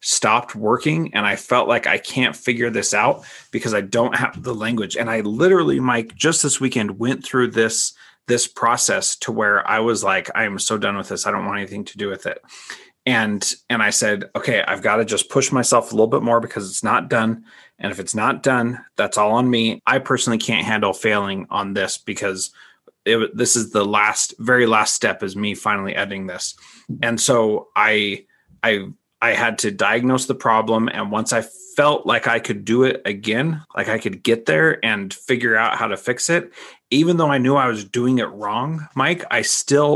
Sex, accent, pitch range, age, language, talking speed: male, American, 110-130 Hz, 30-49, English, 210 wpm